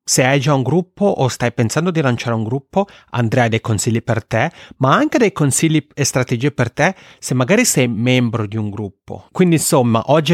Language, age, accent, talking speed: Italian, 30-49, native, 210 wpm